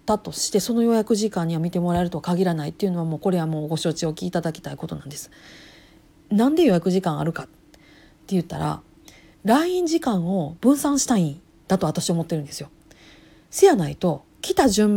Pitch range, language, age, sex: 175-270 Hz, Japanese, 40-59, female